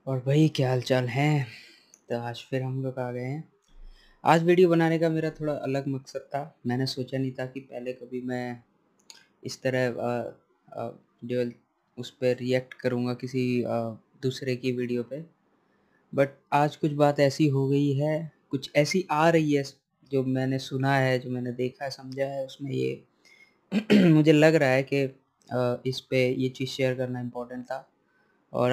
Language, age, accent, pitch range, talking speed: Hindi, 20-39, native, 130-150 Hz, 175 wpm